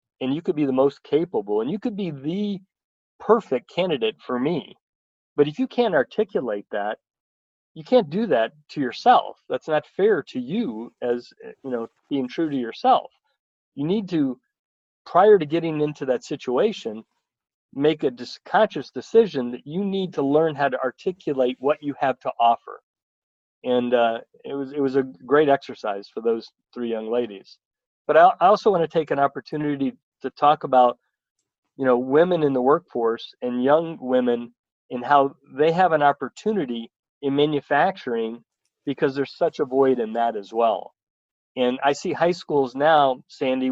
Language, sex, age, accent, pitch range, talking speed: English, male, 40-59, American, 125-155 Hz, 170 wpm